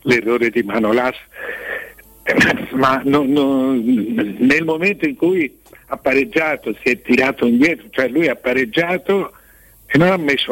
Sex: male